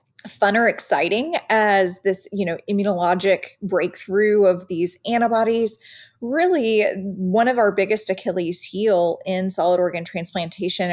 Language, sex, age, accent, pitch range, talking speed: English, female, 30-49, American, 180-220 Hz, 125 wpm